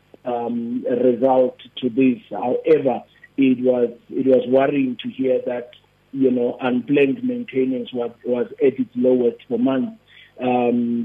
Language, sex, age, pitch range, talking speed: English, male, 50-69, 125-155 Hz, 140 wpm